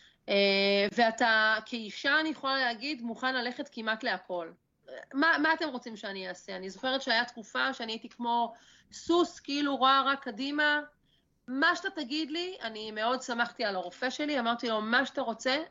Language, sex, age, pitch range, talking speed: Hebrew, female, 30-49, 215-280 Hz, 165 wpm